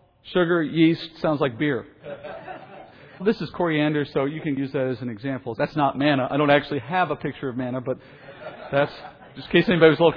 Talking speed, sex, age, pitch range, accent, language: 210 wpm, male, 40-59, 140-185 Hz, American, English